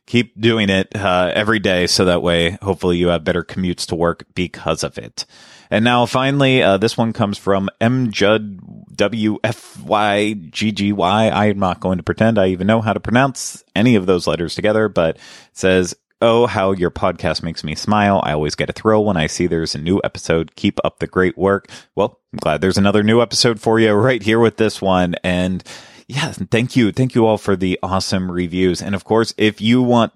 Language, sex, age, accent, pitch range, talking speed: English, male, 30-49, American, 90-110 Hz, 205 wpm